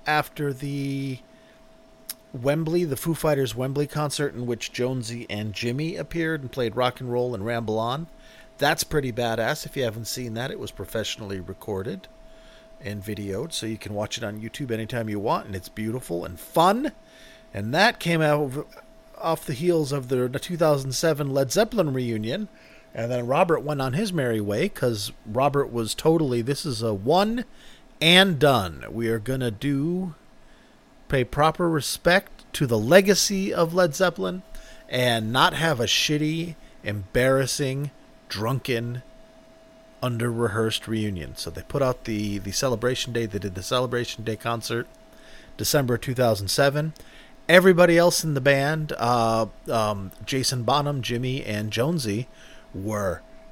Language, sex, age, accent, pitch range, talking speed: English, male, 40-59, American, 115-155 Hz, 150 wpm